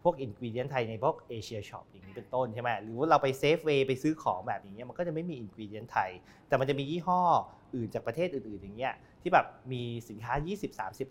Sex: male